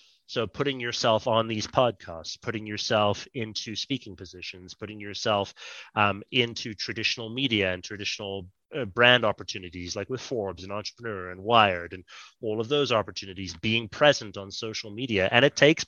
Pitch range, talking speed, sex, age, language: 105-135 Hz, 155 wpm, male, 30-49, English